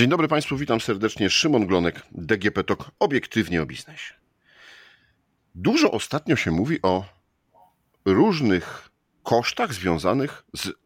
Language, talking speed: Polish, 115 wpm